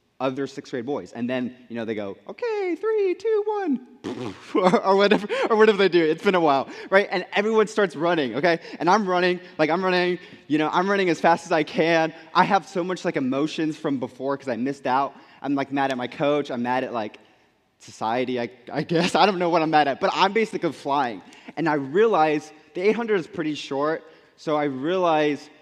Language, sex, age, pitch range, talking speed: English, male, 20-39, 130-180 Hz, 225 wpm